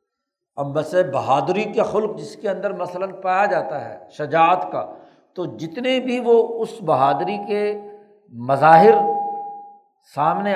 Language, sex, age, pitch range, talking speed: Urdu, male, 60-79, 170-215 Hz, 125 wpm